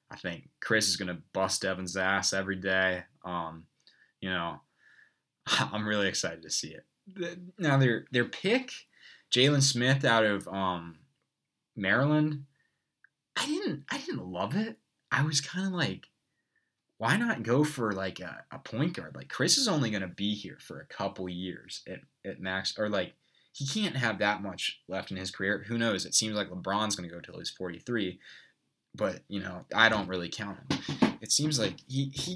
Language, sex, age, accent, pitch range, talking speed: English, male, 20-39, American, 90-115 Hz, 180 wpm